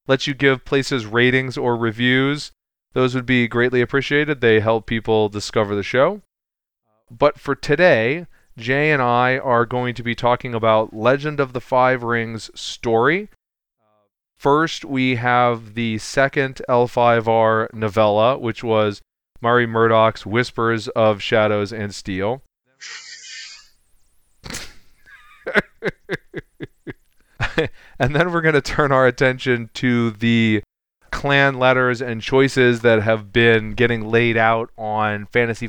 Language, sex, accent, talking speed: English, male, American, 130 wpm